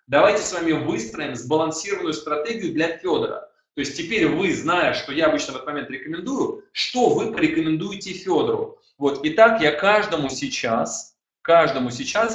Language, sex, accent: Russian, male, native